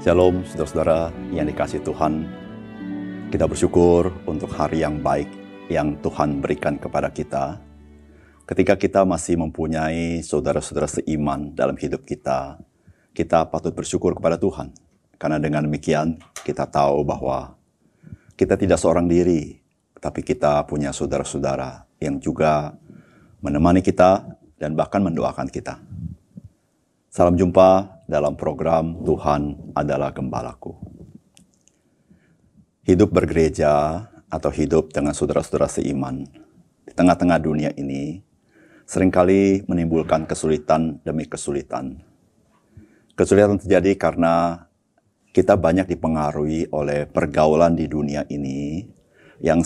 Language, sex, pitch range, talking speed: Indonesian, male, 75-90 Hz, 105 wpm